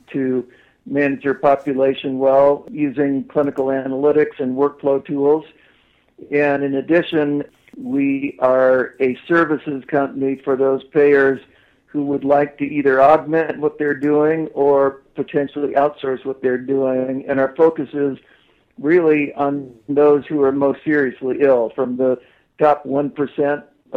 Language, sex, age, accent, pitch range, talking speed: English, male, 60-79, American, 130-145 Hz, 135 wpm